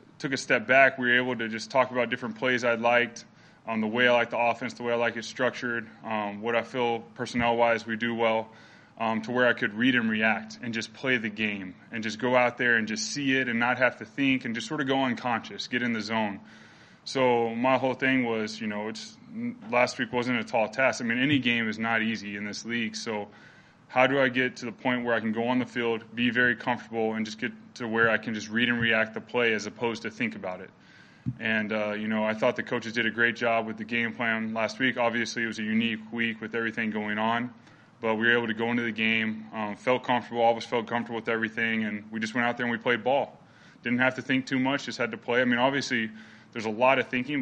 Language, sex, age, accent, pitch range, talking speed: English, male, 20-39, American, 110-125 Hz, 260 wpm